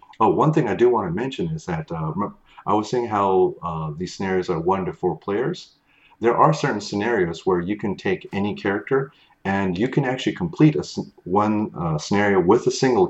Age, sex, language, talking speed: 40-59, male, English, 205 wpm